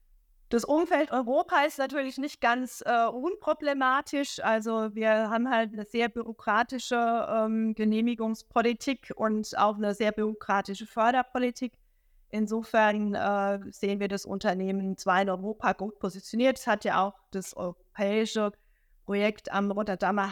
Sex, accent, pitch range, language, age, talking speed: female, German, 190-230 Hz, German, 20-39, 130 wpm